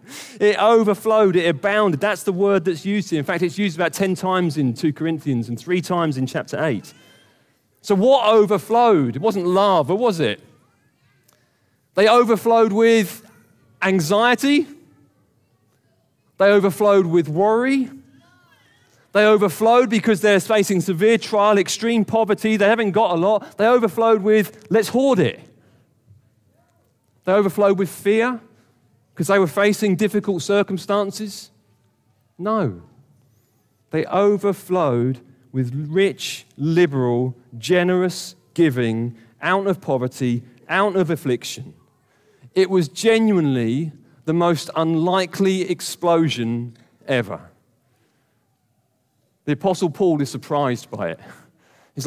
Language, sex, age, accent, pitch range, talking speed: English, male, 30-49, British, 130-205 Hz, 120 wpm